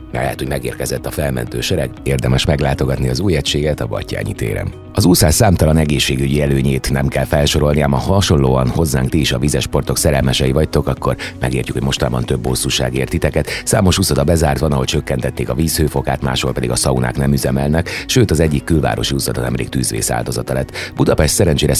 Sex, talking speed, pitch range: male, 175 wpm, 65-80 Hz